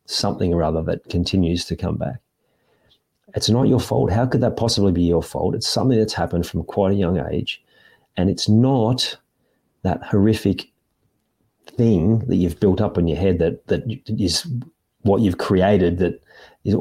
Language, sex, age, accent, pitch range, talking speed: English, male, 40-59, Australian, 85-105 Hz, 175 wpm